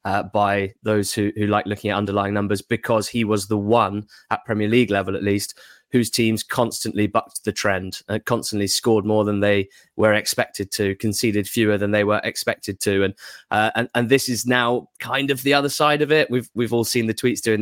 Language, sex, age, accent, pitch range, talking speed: English, male, 20-39, British, 105-120 Hz, 220 wpm